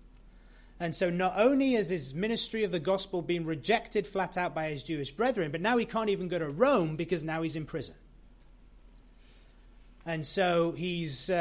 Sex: male